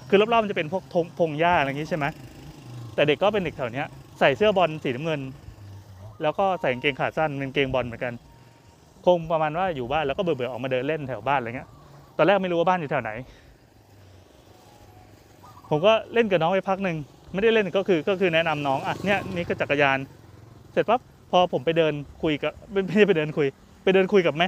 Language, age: Thai, 20-39